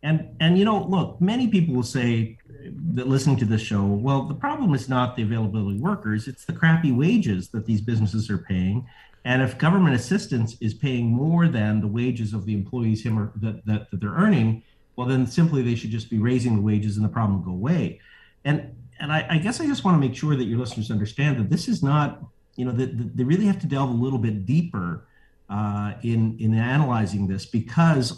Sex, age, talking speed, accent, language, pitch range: male, 50-69, 225 wpm, American, English, 110-150 Hz